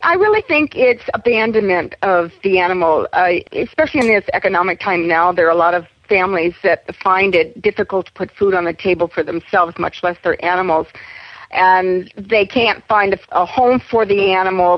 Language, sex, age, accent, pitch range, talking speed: English, female, 50-69, American, 170-220 Hz, 190 wpm